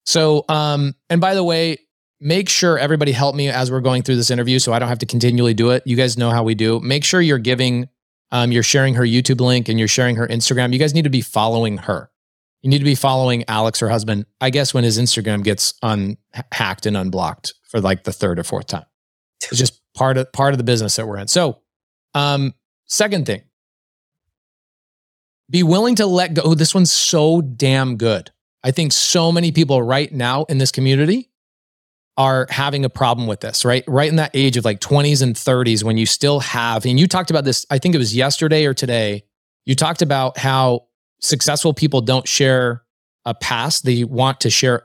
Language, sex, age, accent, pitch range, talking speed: English, male, 30-49, American, 115-145 Hz, 215 wpm